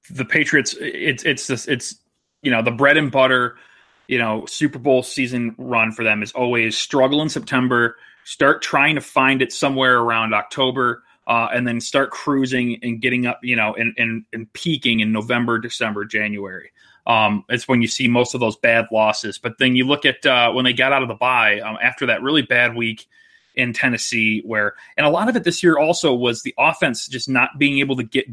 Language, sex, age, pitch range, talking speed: English, male, 30-49, 115-135 Hz, 210 wpm